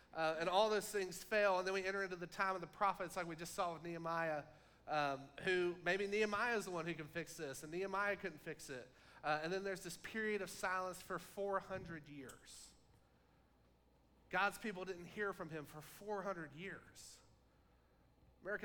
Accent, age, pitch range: American, 30-49, 135-185 Hz